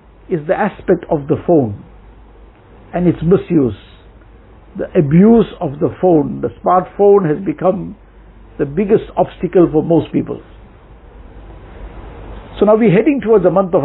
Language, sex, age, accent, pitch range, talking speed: English, male, 60-79, Indian, 155-200 Hz, 145 wpm